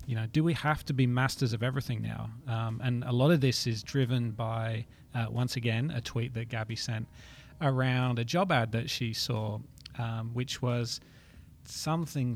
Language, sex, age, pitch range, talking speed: English, male, 30-49, 115-130 Hz, 190 wpm